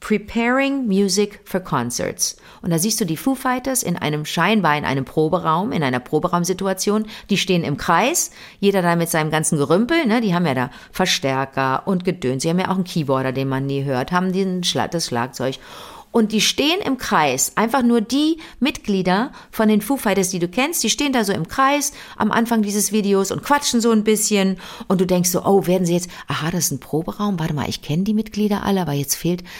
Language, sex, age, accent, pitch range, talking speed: German, female, 50-69, German, 170-220 Hz, 215 wpm